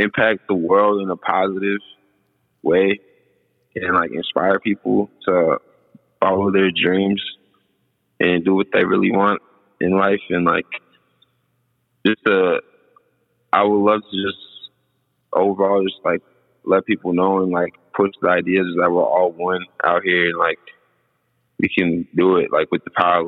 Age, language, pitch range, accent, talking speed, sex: 20-39, English, 90-100 Hz, American, 155 wpm, male